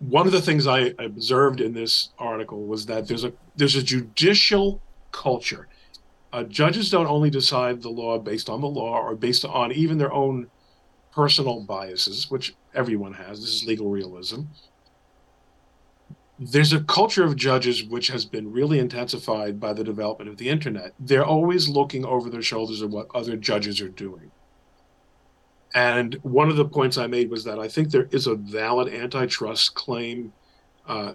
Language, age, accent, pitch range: English, 40-59, American, 110-135 Hz